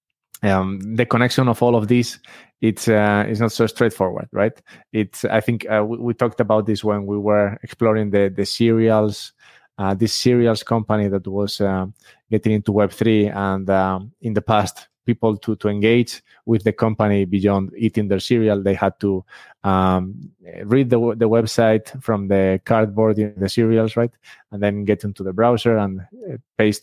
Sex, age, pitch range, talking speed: male, 20-39, 95-115 Hz, 175 wpm